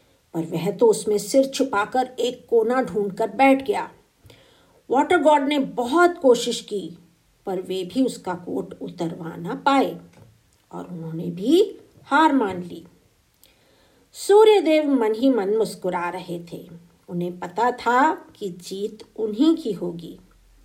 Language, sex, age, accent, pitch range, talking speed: Hindi, female, 50-69, native, 180-295 Hz, 130 wpm